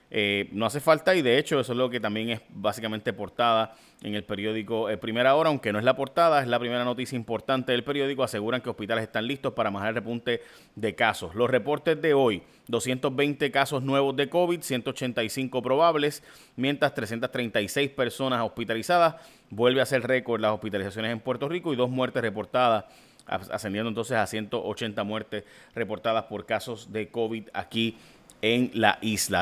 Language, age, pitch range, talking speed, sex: Spanish, 30-49, 115-135 Hz, 175 wpm, male